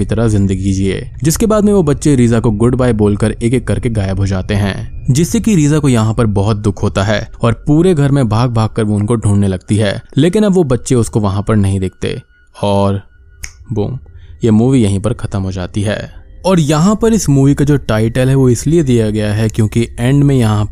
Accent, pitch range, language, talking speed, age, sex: native, 100-135 Hz, Hindi, 125 wpm, 20-39, male